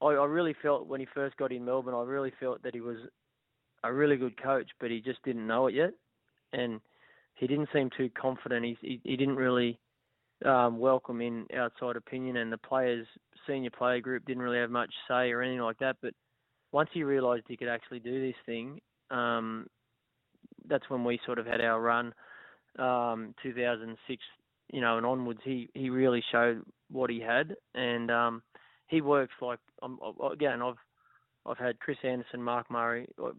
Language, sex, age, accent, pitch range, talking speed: English, male, 20-39, Australian, 120-130 Hz, 185 wpm